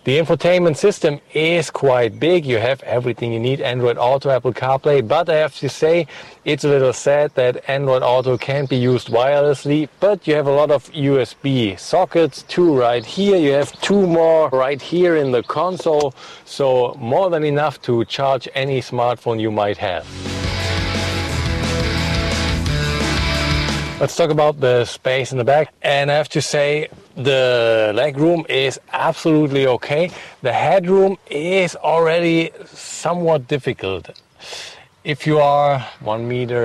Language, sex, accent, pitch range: English, male, German, 115-150 Hz